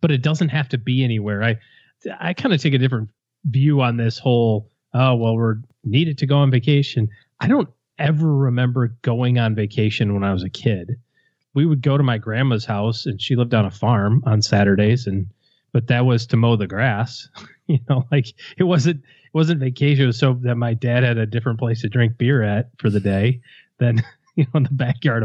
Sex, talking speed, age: male, 220 wpm, 30-49